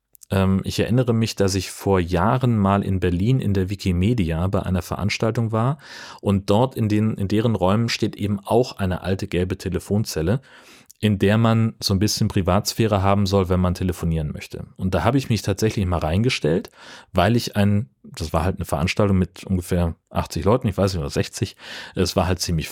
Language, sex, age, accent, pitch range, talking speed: German, male, 30-49, German, 95-115 Hz, 195 wpm